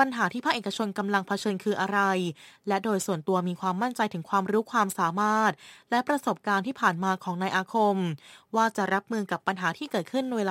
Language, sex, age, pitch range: Thai, female, 20-39, 190-230 Hz